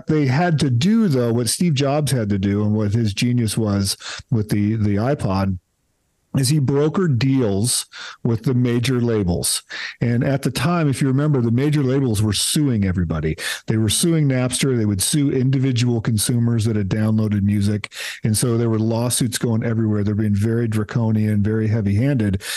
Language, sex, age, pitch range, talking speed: English, male, 40-59, 105-140 Hz, 180 wpm